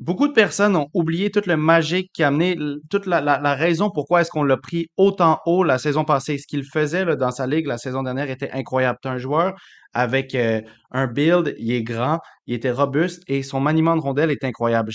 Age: 30-49